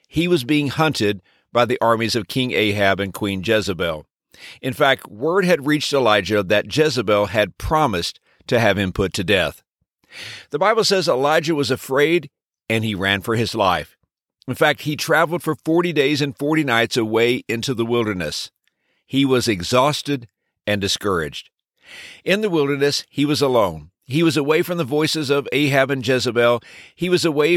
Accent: American